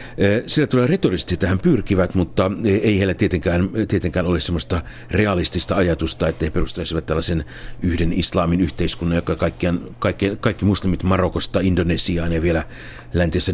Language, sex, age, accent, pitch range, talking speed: Finnish, male, 60-79, native, 85-95 Hz, 135 wpm